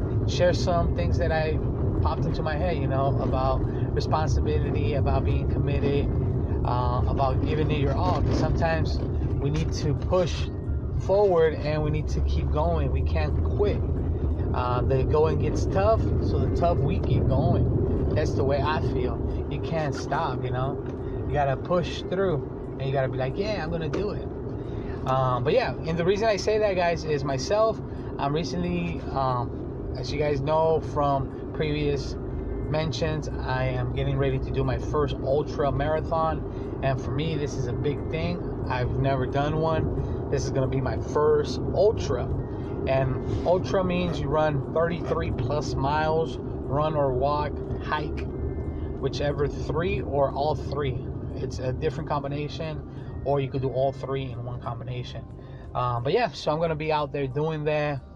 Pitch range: 125-150 Hz